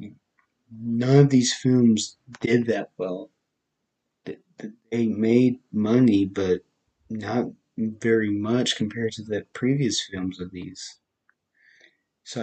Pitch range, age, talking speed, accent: 105-120 Hz, 20-39, 105 wpm, American